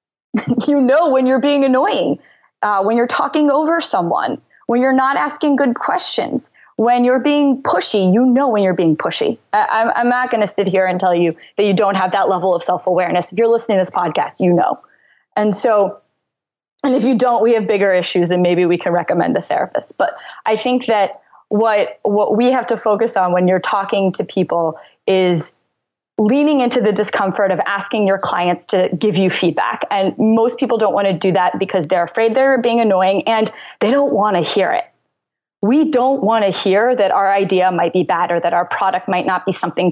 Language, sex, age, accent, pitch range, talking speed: English, female, 20-39, American, 185-245 Hz, 210 wpm